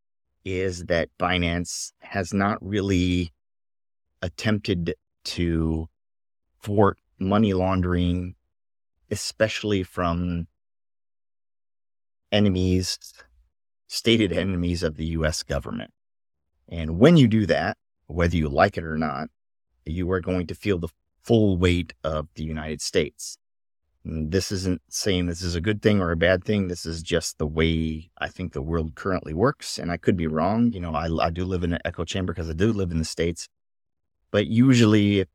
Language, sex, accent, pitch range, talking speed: English, male, American, 80-100 Hz, 155 wpm